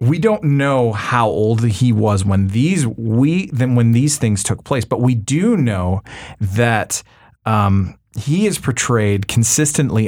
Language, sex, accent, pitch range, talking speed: English, male, American, 105-130 Hz, 155 wpm